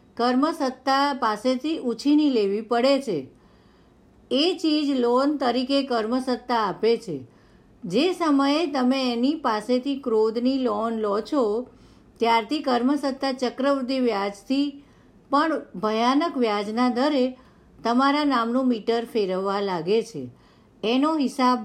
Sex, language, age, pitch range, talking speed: female, English, 50-69, 215-275 Hz, 105 wpm